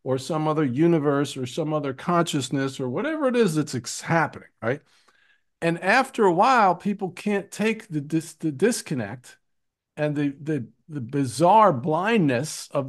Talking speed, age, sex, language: 155 wpm, 50-69, male, English